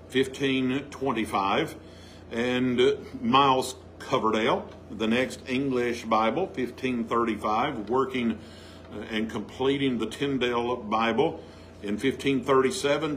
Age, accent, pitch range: 50-69, American, 105-135 Hz